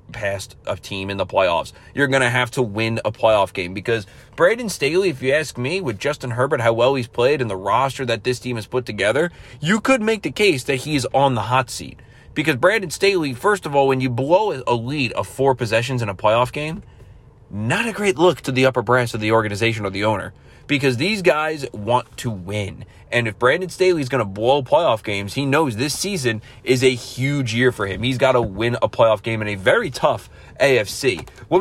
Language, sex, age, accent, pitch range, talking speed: English, male, 30-49, American, 115-135 Hz, 225 wpm